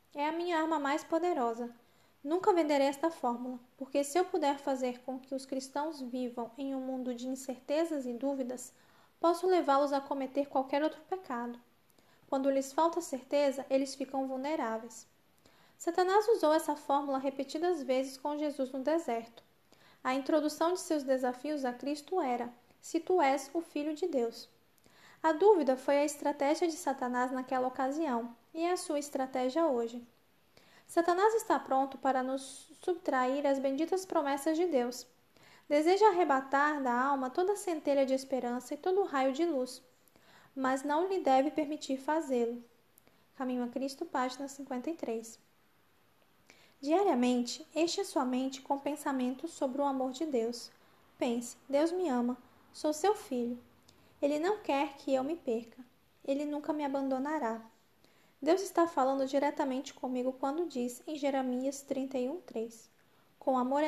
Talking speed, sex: 150 wpm, female